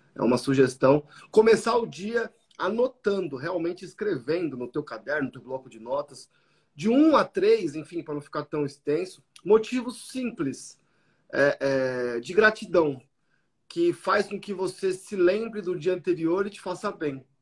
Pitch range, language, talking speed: 160-225 Hz, Portuguese, 160 wpm